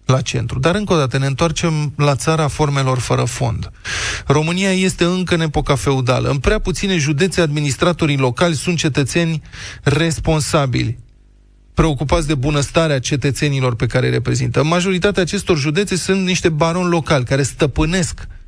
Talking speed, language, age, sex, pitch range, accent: 145 wpm, Romanian, 20-39, male, 130-165 Hz, native